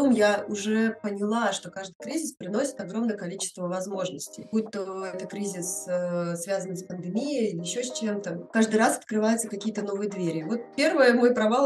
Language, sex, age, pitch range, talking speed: Russian, female, 20-39, 190-230 Hz, 160 wpm